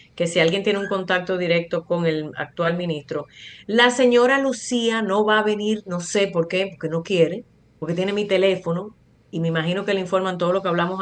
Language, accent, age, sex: Spanish, American, 30-49, female